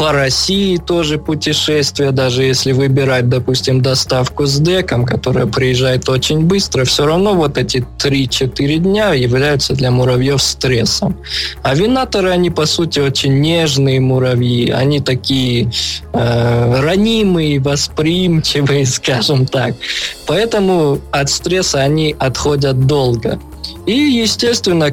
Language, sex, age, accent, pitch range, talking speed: Russian, male, 20-39, native, 125-155 Hz, 115 wpm